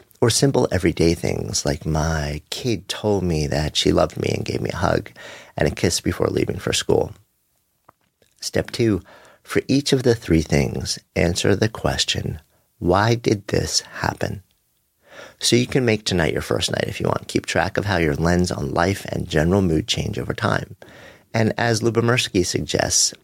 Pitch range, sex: 80-115 Hz, male